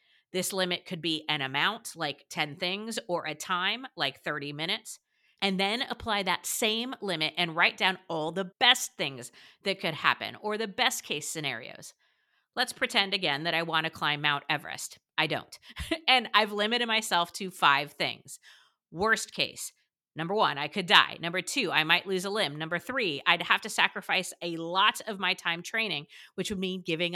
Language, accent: English, American